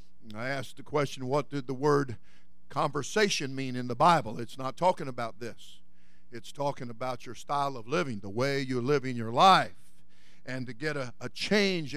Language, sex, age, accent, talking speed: English, male, 50-69, American, 185 wpm